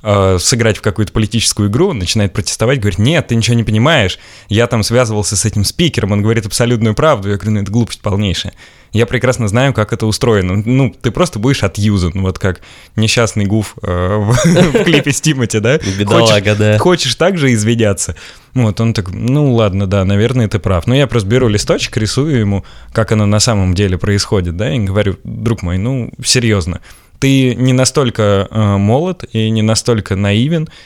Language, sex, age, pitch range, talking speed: Russian, male, 20-39, 100-120 Hz, 175 wpm